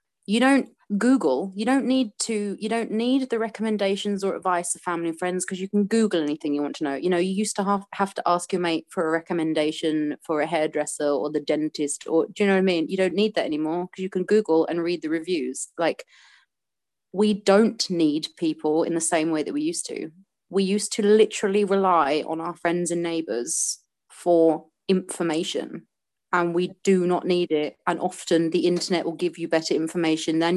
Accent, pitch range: British, 160-200 Hz